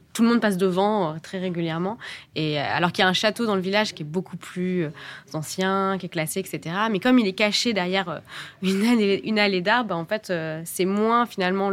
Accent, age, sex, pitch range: French, 20-39, female, 165-200 Hz